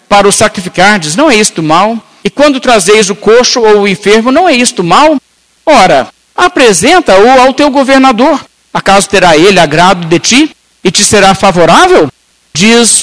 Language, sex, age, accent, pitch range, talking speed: Portuguese, male, 60-79, Brazilian, 175-230 Hz, 165 wpm